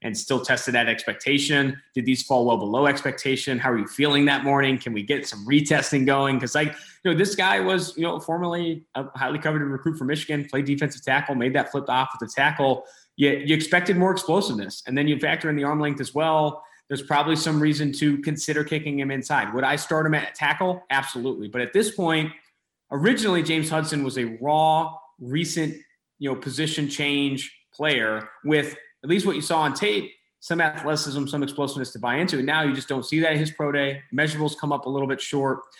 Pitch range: 135-155 Hz